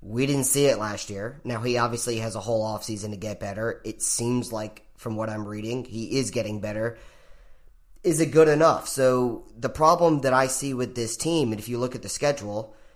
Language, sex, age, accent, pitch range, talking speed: English, male, 30-49, American, 105-135 Hz, 220 wpm